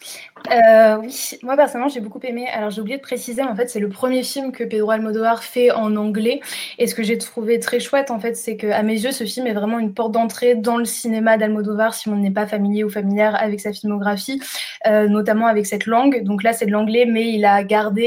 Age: 20-39